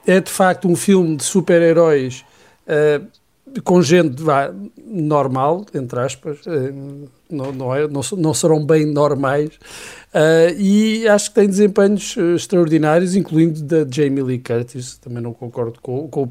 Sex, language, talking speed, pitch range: male, Portuguese, 130 wpm, 140-170 Hz